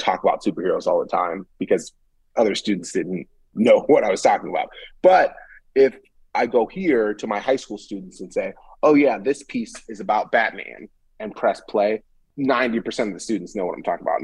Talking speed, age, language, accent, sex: 200 wpm, 30-49, English, American, male